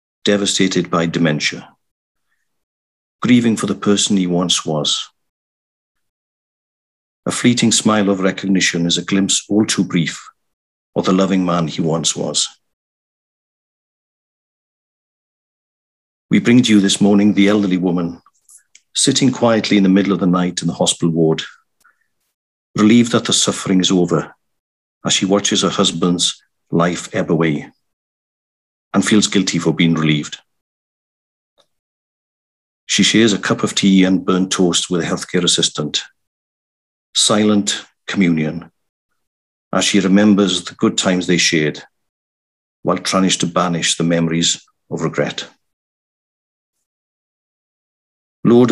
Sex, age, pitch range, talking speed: male, 50-69, 80-100 Hz, 125 wpm